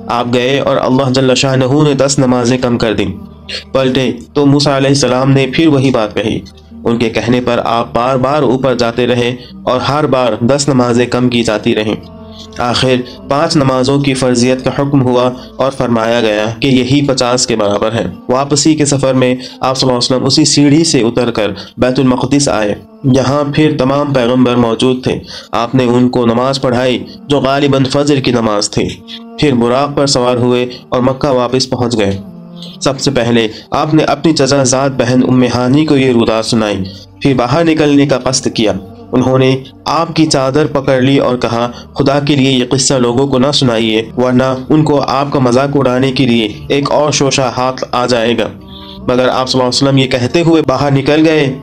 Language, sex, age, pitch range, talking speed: Urdu, male, 30-49, 120-140 Hz, 195 wpm